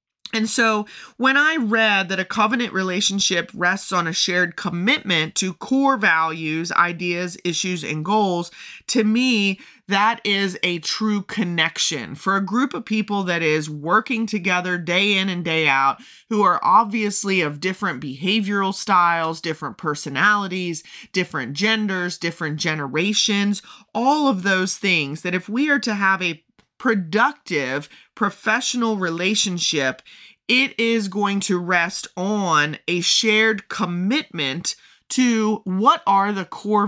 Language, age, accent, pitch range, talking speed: English, 30-49, American, 175-220 Hz, 135 wpm